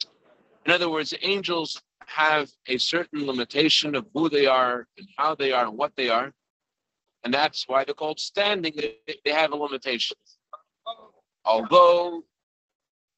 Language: English